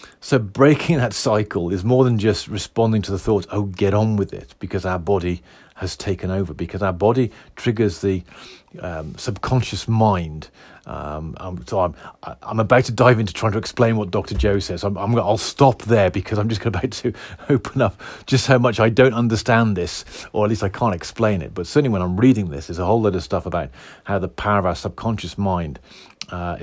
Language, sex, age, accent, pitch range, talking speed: English, male, 40-59, British, 95-115 Hz, 205 wpm